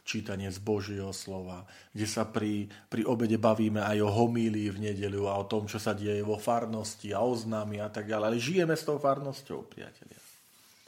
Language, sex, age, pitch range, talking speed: Slovak, male, 40-59, 95-125 Hz, 190 wpm